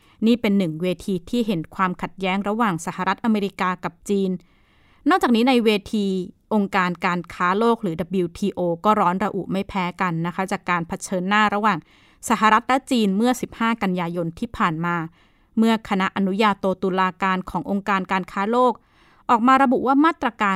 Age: 20-39